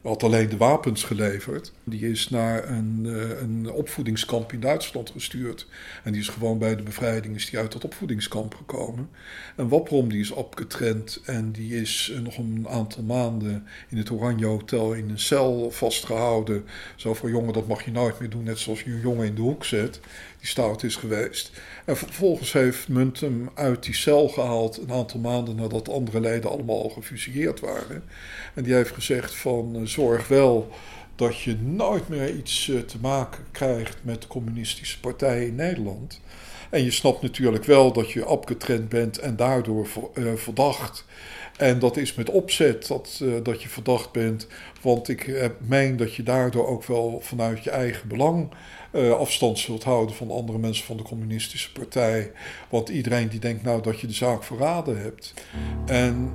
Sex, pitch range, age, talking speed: male, 110-125 Hz, 60-79, 175 wpm